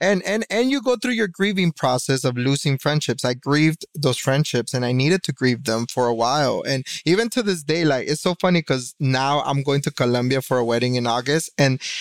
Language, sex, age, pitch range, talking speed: English, male, 20-39, 140-185 Hz, 230 wpm